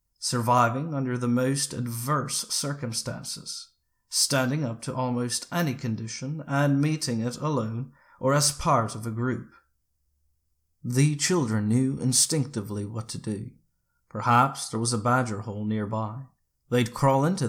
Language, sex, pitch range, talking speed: English, male, 110-135 Hz, 135 wpm